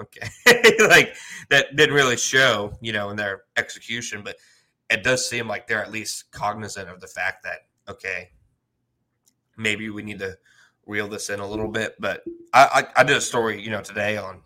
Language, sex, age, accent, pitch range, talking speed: English, male, 20-39, American, 100-120 Hz, 190 wpm